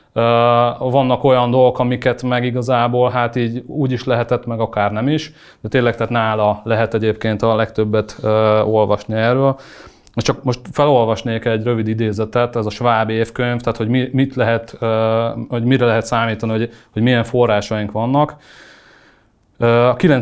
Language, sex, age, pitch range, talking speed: English, male, 30-49, 110-130 Hz, 140 wpm